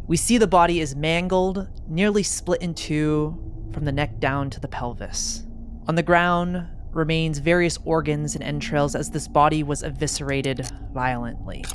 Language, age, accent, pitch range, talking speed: English, 30-49, American, 130-160 Hz, 160 wpm